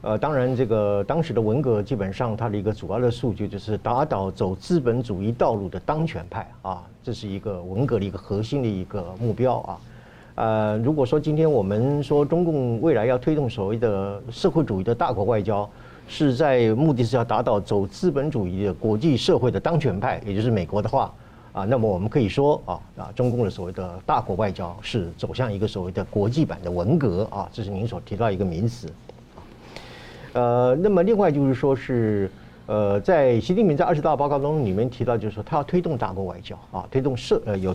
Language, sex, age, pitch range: Chinese, male, 50-69, 100-130 Hz